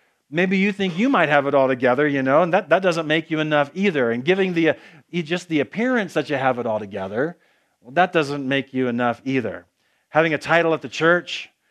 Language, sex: English, male